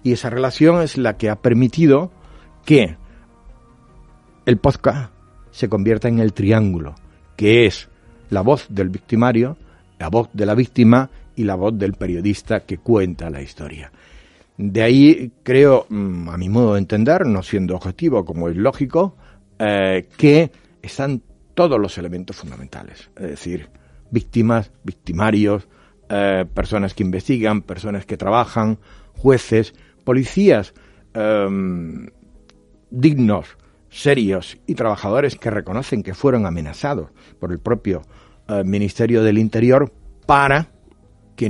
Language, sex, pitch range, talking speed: Spanish, male, 95-125 Hz, 130 wpm